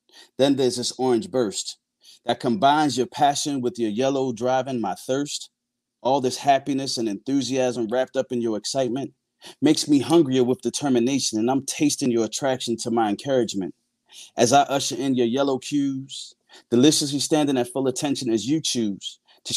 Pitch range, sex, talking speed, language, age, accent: 120-145 Hz, male, 165 wpm, English, 30-49, American